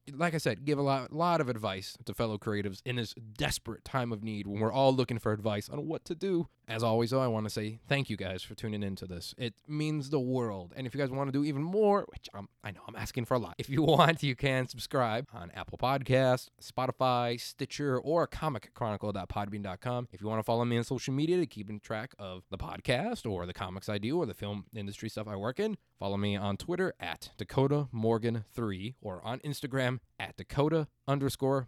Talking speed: 225 wpm